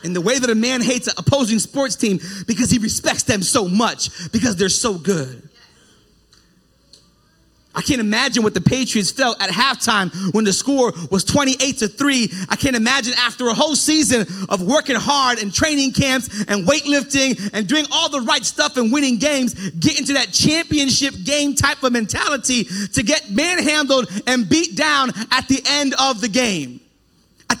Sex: male